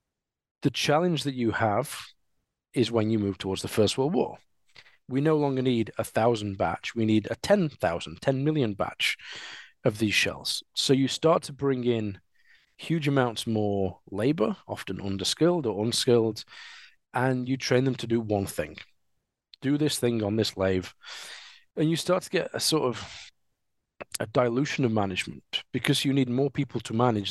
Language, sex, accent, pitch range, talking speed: English, male, British, 105-135 Hz, 170 wpm